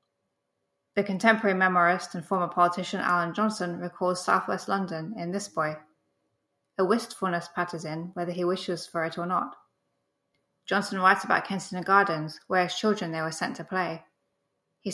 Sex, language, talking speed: female, English, 160 wpm